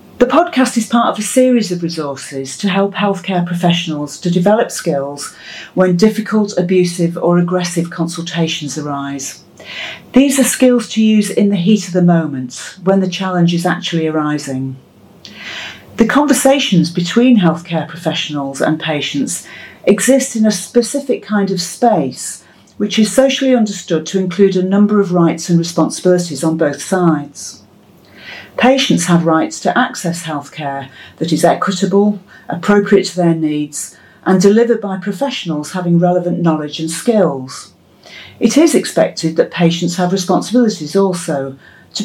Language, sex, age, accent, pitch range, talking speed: English, female, 40-59, British, 160-215 Hz, 145 wpm